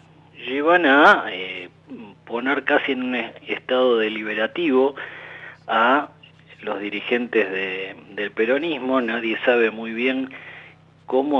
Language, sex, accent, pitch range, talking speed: Italian, male, Argentinian, 115-145 Hz, 100 wpm